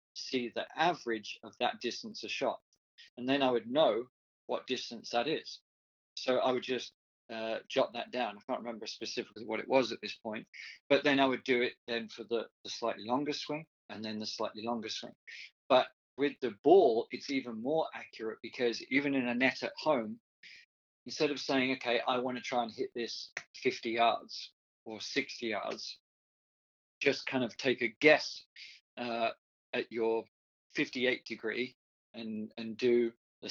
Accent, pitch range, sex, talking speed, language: British, 115-135 Hz, male, 180 wpm, English